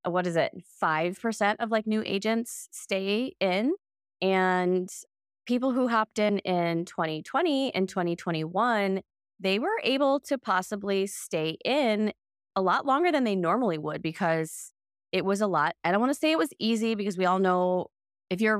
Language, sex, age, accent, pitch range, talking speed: English, female, 20-39, American, 165-215 Hz, 170 wpm